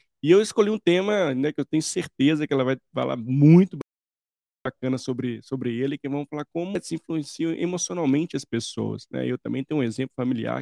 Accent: Brazilian